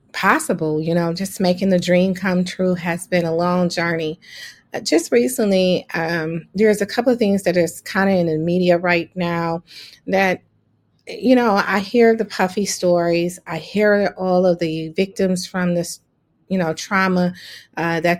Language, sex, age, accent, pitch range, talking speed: English, female, 30-49, American, 165-195 Hz, 175 wpm